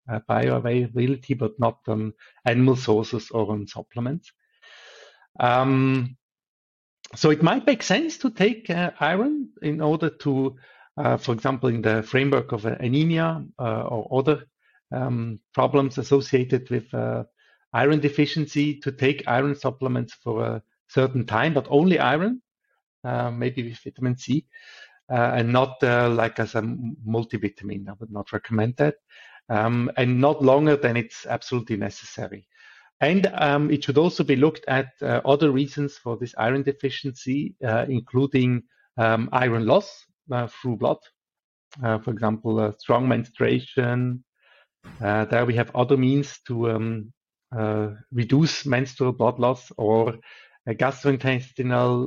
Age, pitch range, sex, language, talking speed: 50-69, 115-140 Hz, male, English, 140 wpm